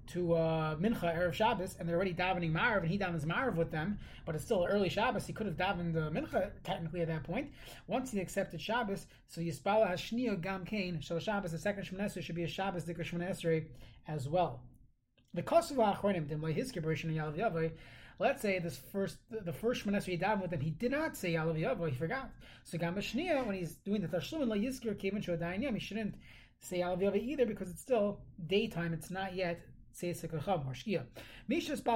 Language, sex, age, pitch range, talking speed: English, male, 30-49, 165-205 Hz, 180 wpm